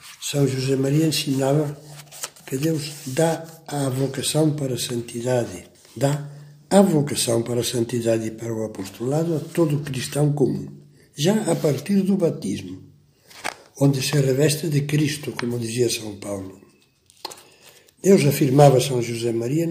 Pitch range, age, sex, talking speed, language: 125-160 Hz, 60-79, male, 135 wpm, Portuguese